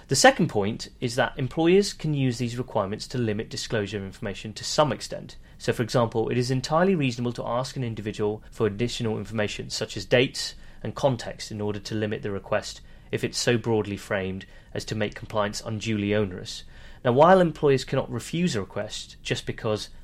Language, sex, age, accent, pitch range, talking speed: English, male, 30-49, British, 105-130 Hz, 190 wpm